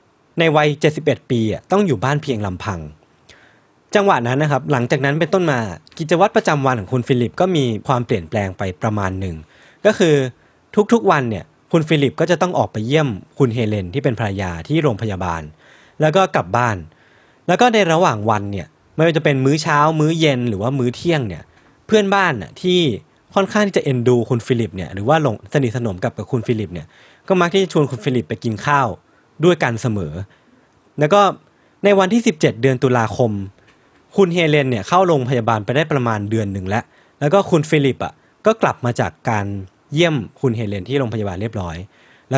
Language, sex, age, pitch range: Thai, male, 20-39, 115-160 Hz